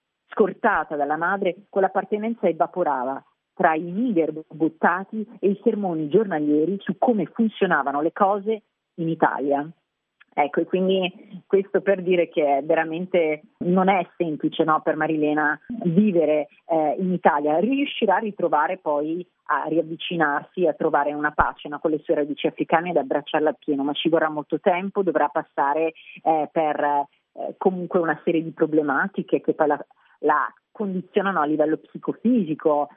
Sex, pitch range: female, 155-185 Hz